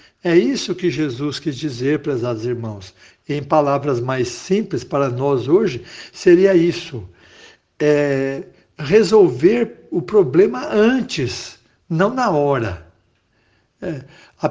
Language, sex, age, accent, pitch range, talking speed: Portuguese, male, 60-79, Brazilian, 130-185 Hz, 105 wpm